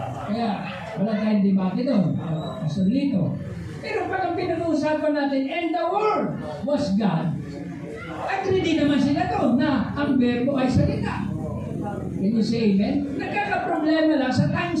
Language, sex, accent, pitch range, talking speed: Filipino, male, native, 210-300 Hz, 140 wpm